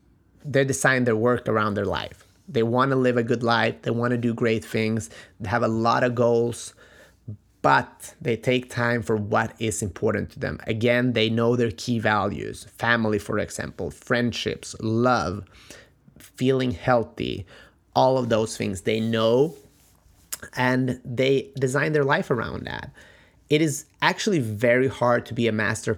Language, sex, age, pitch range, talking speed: English, male, 30-49, 105-120 Hz, 165 wpm